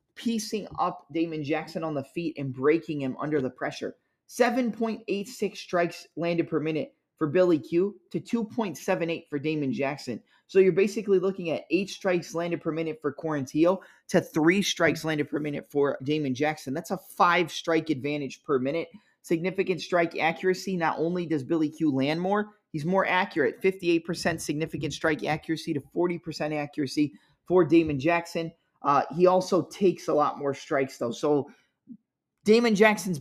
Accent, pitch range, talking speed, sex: American, 150-185 Hz, 160 wpm, male